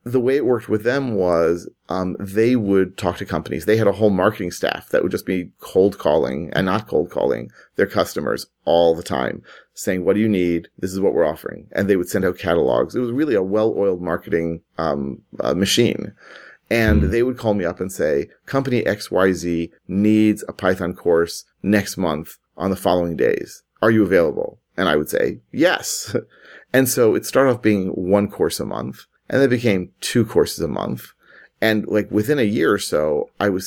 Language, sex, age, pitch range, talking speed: English, male, 30-49, 90-115 Hz, 200 wpm